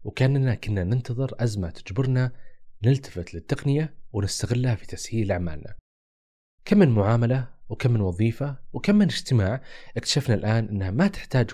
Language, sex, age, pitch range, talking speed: Arabic, male, 30-49, 100-125 Hz, 130 wpm